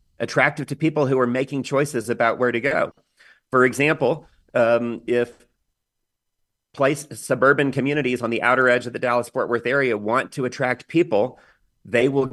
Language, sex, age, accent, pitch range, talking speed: English, male, 40-59, American, 115-140 Hz, 160 wpm